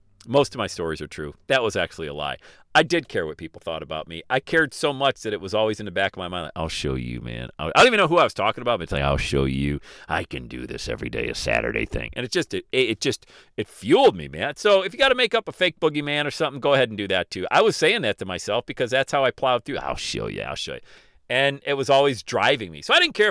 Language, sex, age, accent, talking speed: English, male, 40-59, American, 305 wpm